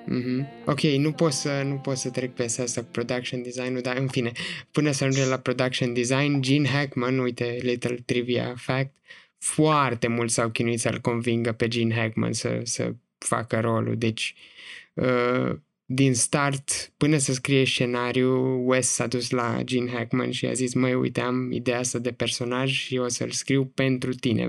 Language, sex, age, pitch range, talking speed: Romanian, male, 20-39, 125-140 Hz, 180 wpm